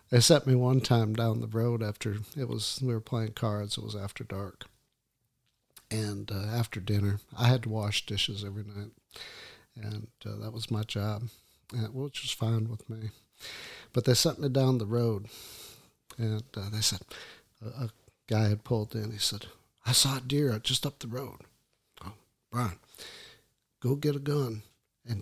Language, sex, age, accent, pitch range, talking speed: English, male, 50-69, American, 105-125 Hz, 180 wpm